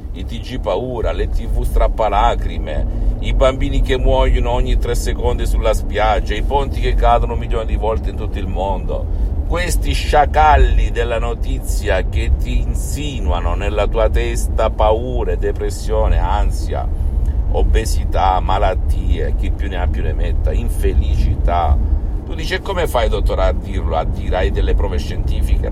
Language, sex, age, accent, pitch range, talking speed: Italian, male, 50-69, native, 75-95 Hz, 140 wpm